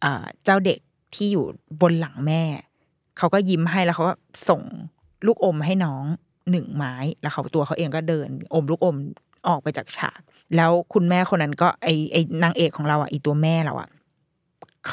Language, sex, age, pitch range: Thai, female, 20-39, 155-185 Hz